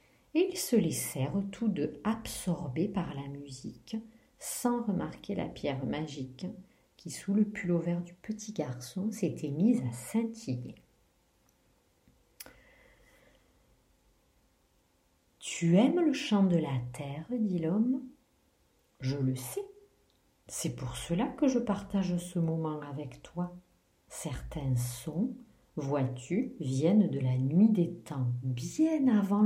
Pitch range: 150-220 Hz